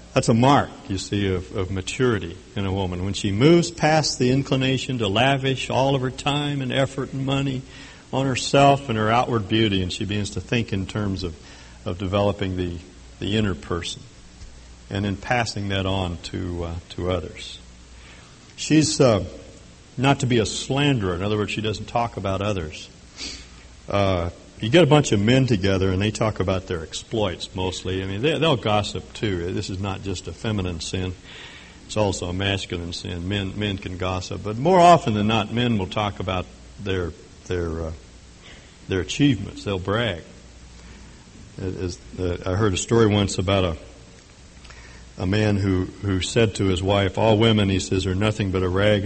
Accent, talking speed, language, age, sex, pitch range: American, 185 wpm, English, 60-79, male, 90-115 Hz